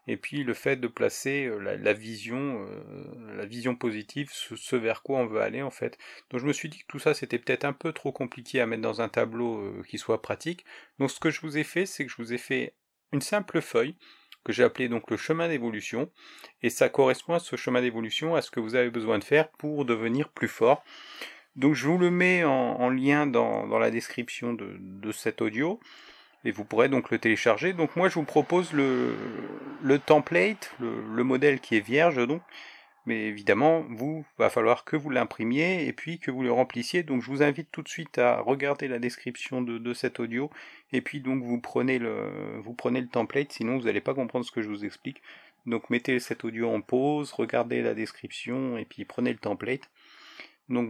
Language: French